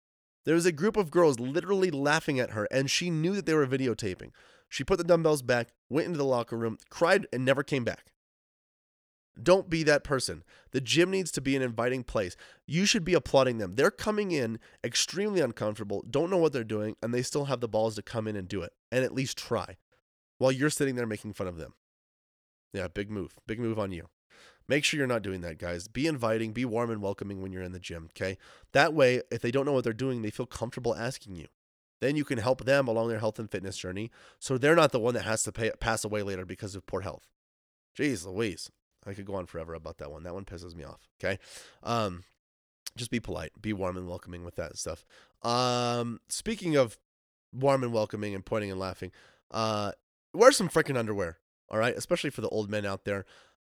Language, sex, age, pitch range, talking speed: English, male, 20-39, 95-135 Hz, 225 wpm